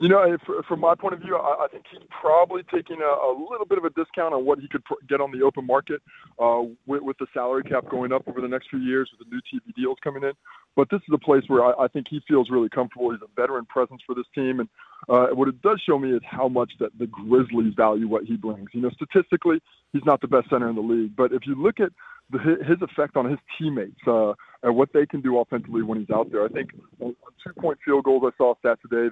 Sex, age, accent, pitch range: male, 20-39, American, 120-145 Hz